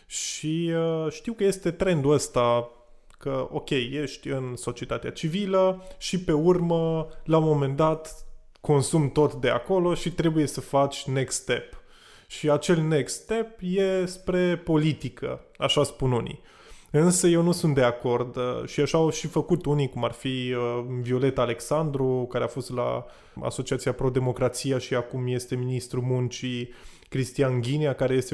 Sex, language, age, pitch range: male, Romanian, 20-39, 125-155 Hz